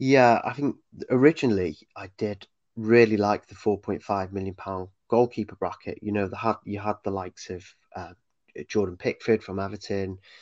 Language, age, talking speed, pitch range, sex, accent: English, 30-49, 155 wpm, 95-110 Hz, male, British